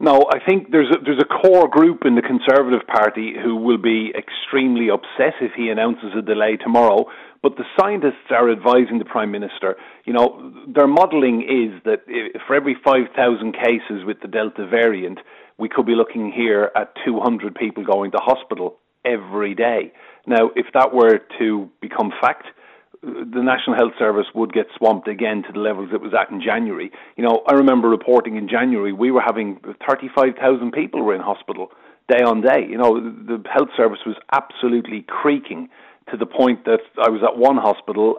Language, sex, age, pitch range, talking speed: English, male, 40-59, 110-135 Hz, 180 wpm